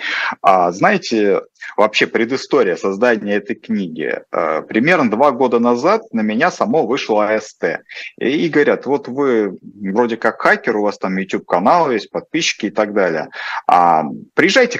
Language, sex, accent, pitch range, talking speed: Russian, male, native, 105-150 Hz, 135 wpm